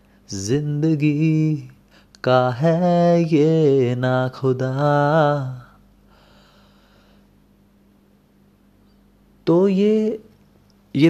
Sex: male